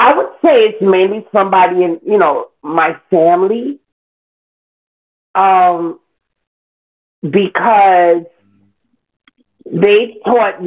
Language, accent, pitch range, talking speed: English, American, 160-215 Hz, 85 wpm